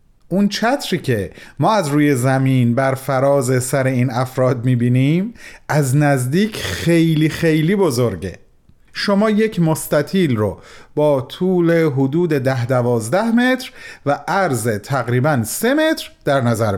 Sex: male